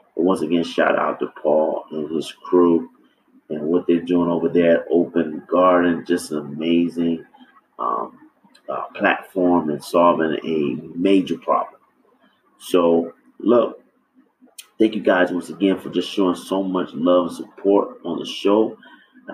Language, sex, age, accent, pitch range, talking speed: English, male, 30-49, American, 85-115 Hz, 150 wpm